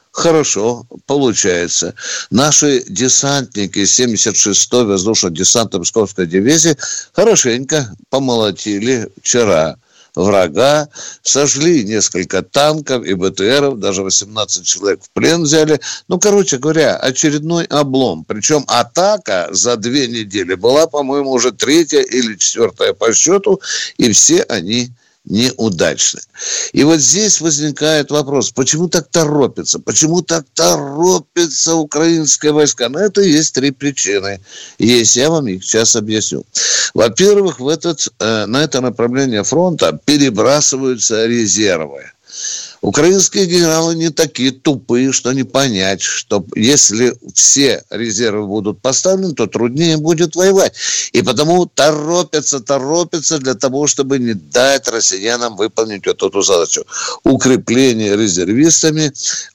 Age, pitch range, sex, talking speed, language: 60-79, 115-160 Hz, male, 115 wpm, Russian